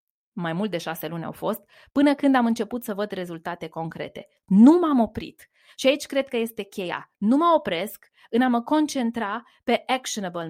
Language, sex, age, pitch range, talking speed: Romanian, female, 20-39, 190-265 Hz, 190 wpm